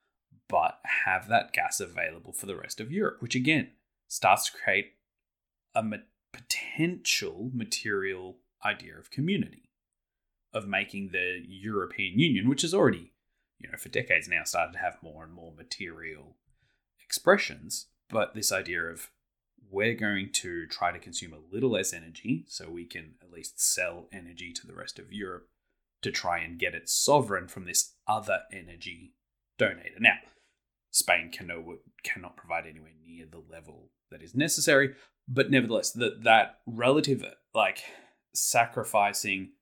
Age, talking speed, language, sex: 20-39, 145 wpm, English, male